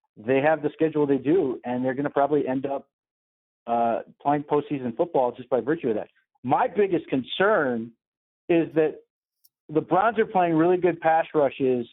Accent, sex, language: American, male, English